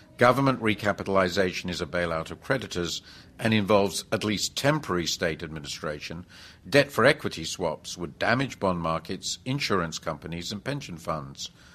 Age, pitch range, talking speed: 50-69, 85-110 Hz, 140 wpm